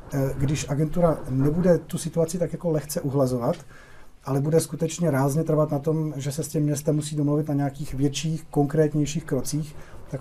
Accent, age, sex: native, 40-59, male